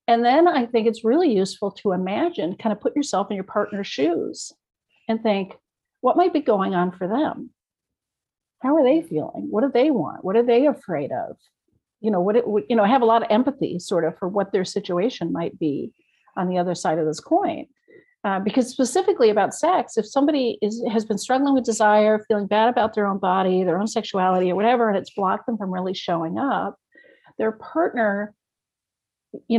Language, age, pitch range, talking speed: English, 50-69, 185-250 Hz, 205 wpm